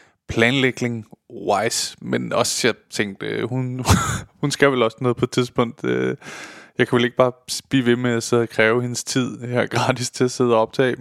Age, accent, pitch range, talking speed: 20-39, native, 115-145 Hz, 185 wpm